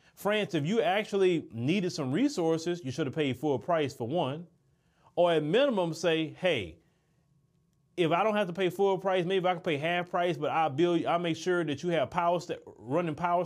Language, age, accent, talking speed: English, 30-49, American, 210 wpm